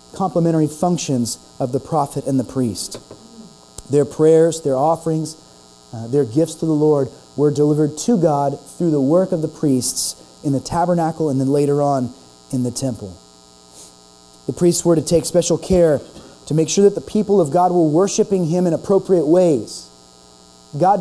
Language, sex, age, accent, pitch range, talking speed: English, male, 30-49, American, 130-180 Hz, 170 wpm